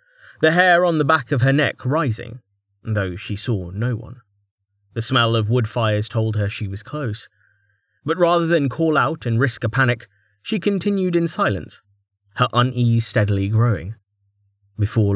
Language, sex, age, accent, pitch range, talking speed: English, male, 30-49, British, 100-115 Hz, 165 wpm